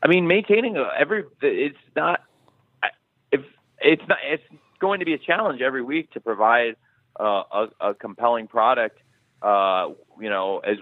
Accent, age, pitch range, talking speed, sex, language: American, 30-49, 105-135 Hz, 155 wpm, male, English